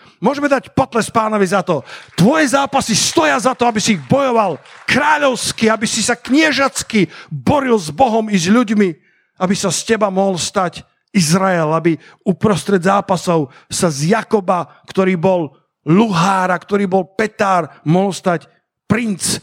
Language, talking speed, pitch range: Slovak, 150 wpm, 175-225 Hz